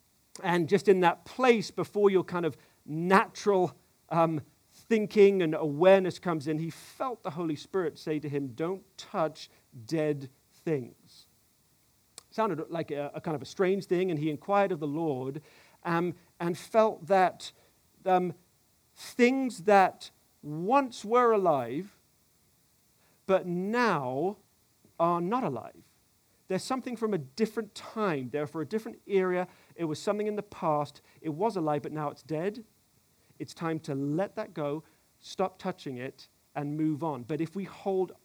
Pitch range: 150-195 Hz